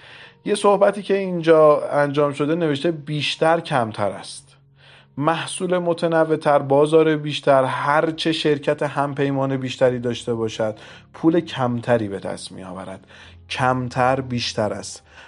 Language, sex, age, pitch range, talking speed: Persian, male, 30-49, 120-150 Hz, 115 wpm